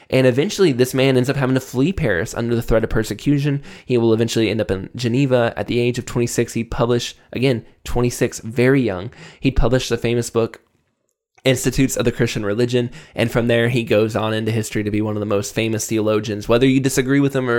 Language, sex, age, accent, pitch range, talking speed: English, male, 10-29, American, 110-135 Hz, 220 wpm